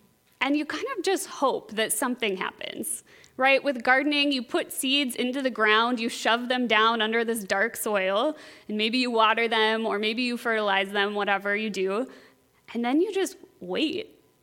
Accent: American